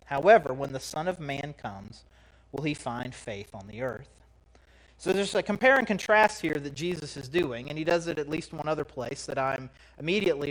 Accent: American